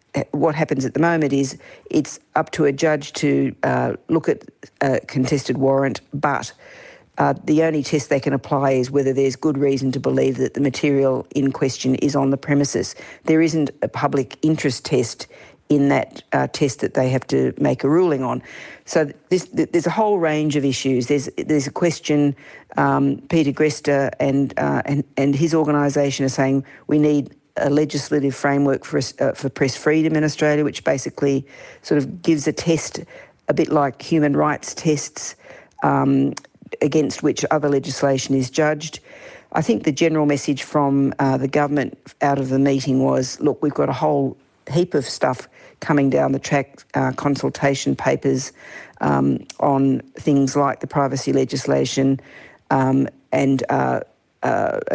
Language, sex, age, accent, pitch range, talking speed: English, female, 50-69, Australian, 135-150 Hz, 170 wpm